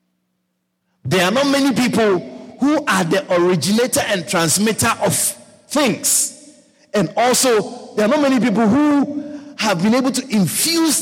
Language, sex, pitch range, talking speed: English, male, 135-230 Hz, 140 wpm